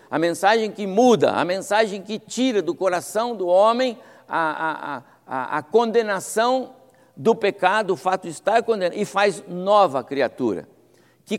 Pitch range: 175-230 Hz